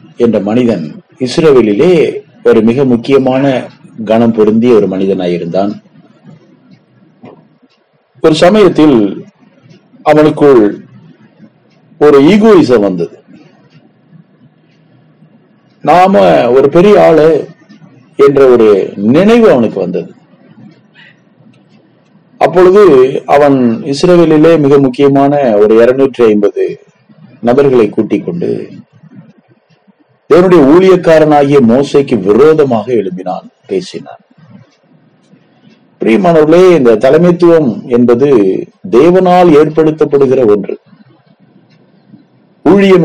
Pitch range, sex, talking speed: 125-180 Hz, male, 70 wpm